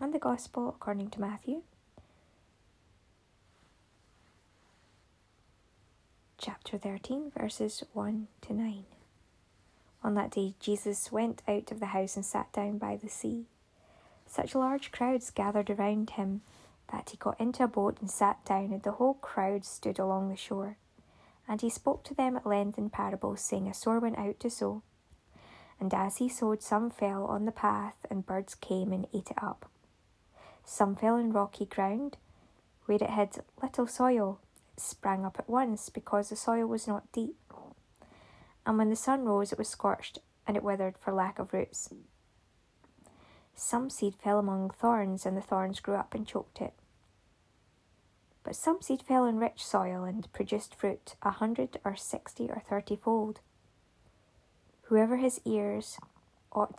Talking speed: 160 wpm